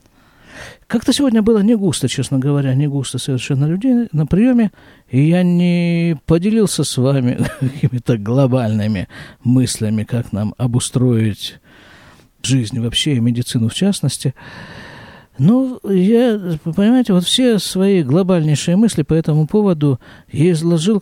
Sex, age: male, 50-69